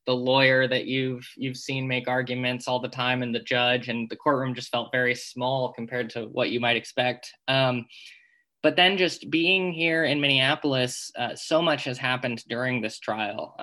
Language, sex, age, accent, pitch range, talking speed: English, male, 20-39, American, 120-135 Hz, 190 wpm